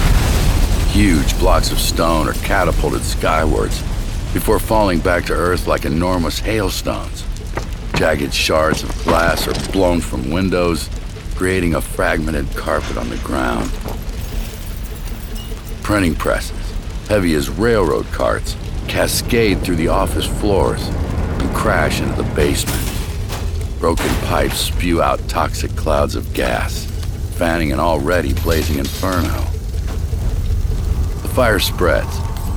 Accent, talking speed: American, 110 wpm